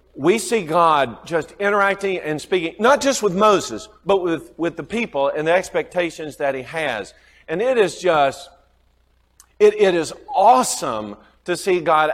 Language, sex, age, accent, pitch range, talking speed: English, male, 40-59, American, 140-185 Hz, 165 wpm